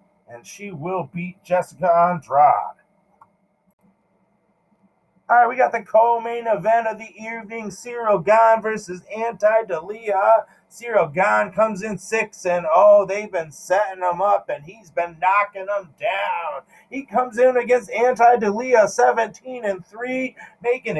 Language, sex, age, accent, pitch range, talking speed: English, male, 40-59, American, 190-235 Hz, 140 wpm